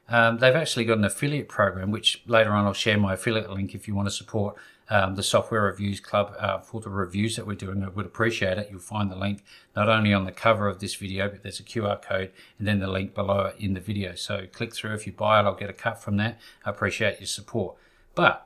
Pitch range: 100-130 Hz